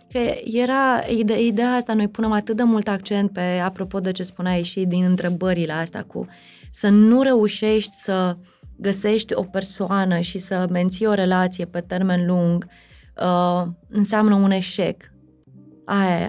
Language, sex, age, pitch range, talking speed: Romanian, female, 20-39, 180-225 Hz, 145 wpm